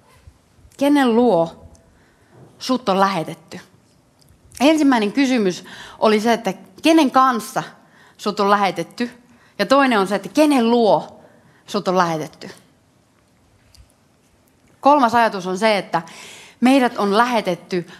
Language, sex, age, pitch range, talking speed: Finnish, female, 30-49, 185-275 Hz, 110 wpm